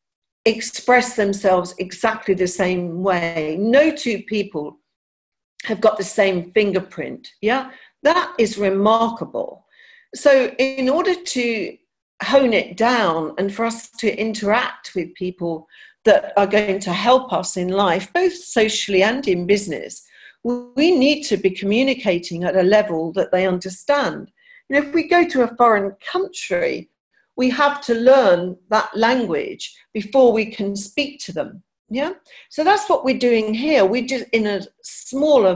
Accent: British